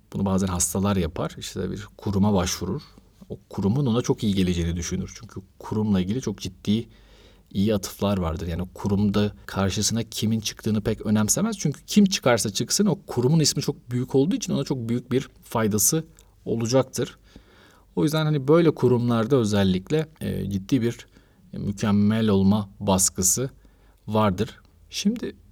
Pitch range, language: 100-145 Hz, Turkish